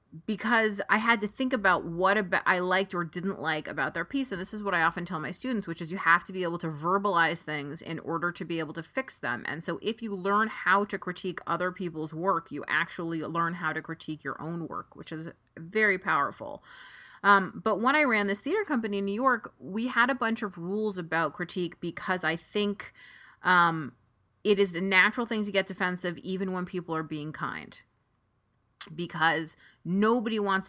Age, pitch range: 30-49, 165-205 Hz